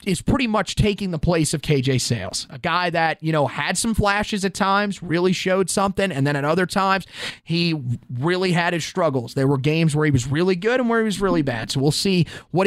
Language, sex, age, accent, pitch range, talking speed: English, male, 30-49, American, 140-180 Hz, 235 wpm